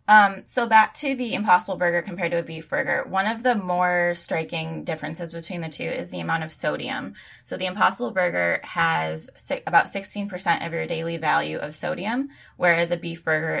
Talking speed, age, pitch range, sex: 190 wpm, 20-39, 155-180 Hz, female